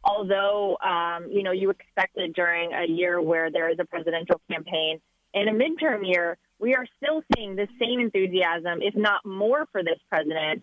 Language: English